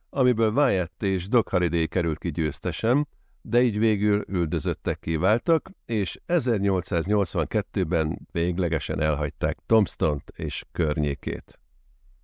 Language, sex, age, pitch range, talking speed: Hungarian, male, 50-69, 80-100 Hz, 95 wpm